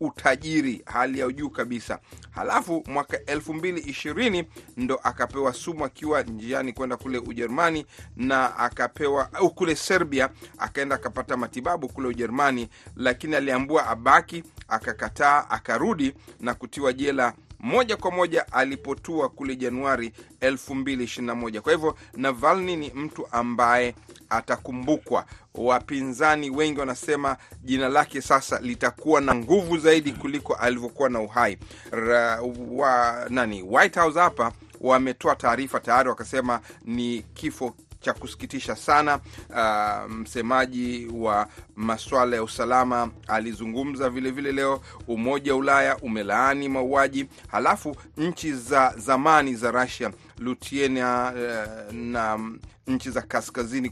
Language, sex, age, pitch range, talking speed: Swahili, male, 40-59, 120-145 Hz, 115 wpm